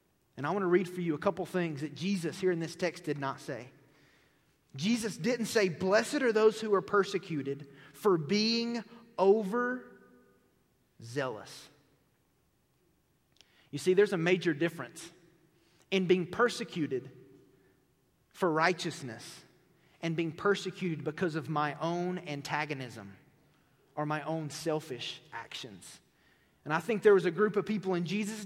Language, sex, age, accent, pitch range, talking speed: English, male, 30-49, American, 155-215 Hz, 140 wpm